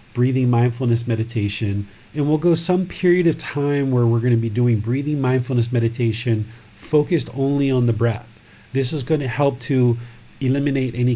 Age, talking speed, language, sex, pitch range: 40-59, 170 wpm, English, male, 110-135 Hz